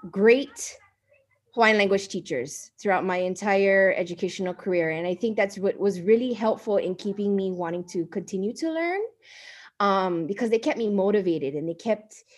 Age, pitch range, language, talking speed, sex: 20-39, 185-245 Hz, English, 165 wpm, female